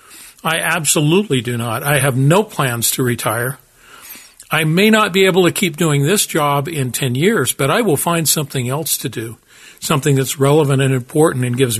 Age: 50-69